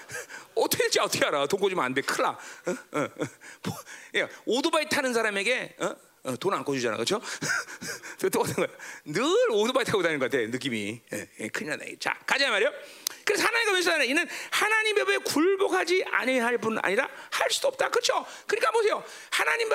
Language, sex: Korean, male